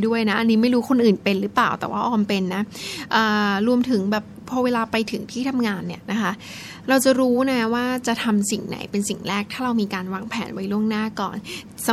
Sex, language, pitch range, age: female, Thai, 200-235 Hz, 10-29